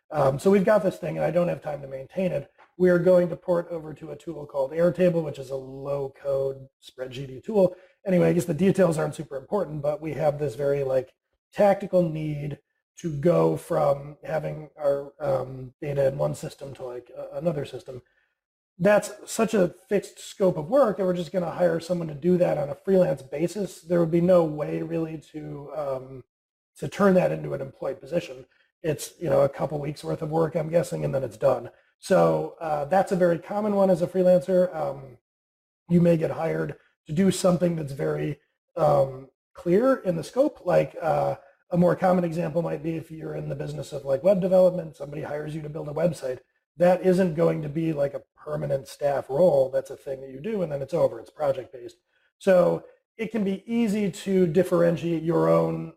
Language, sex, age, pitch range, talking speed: English, male, 30-49, 140-185 Hz, 210 wpm